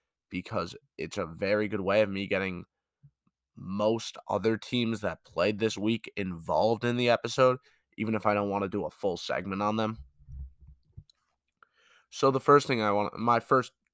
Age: 20-39